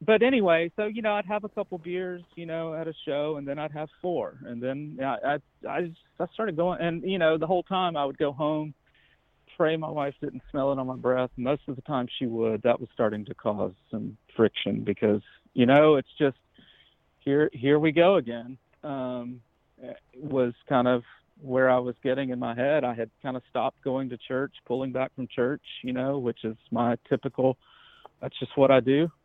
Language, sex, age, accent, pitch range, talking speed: English, male, 40-59, American, 120-150 Hz, 215 wpm